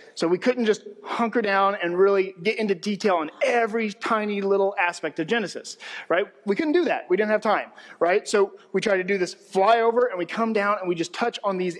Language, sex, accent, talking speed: English, male, American, 230 wpm